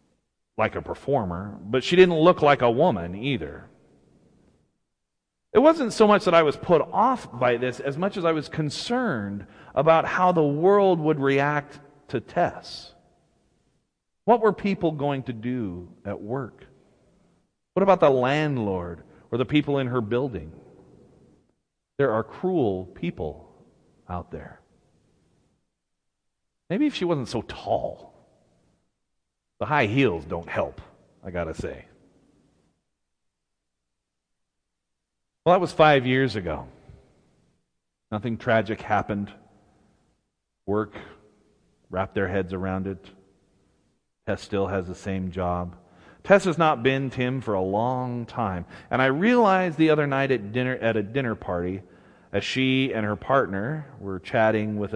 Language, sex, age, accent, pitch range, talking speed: English, male, 40-59, American, 95-155 Hz, 135 wpm